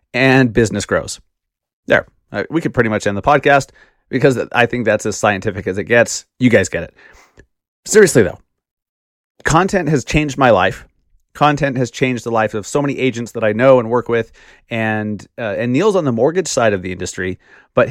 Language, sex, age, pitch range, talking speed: English, male, 30-49, 110-130 Hz, 195 wpm